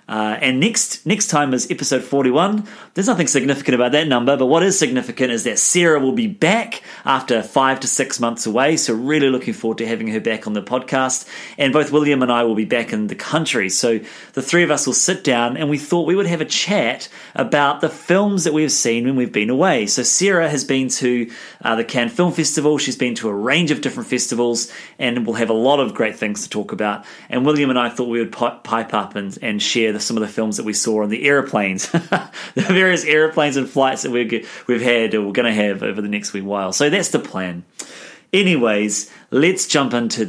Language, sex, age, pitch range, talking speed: English, male, 30-49, 110-150 Hz, 235 wpm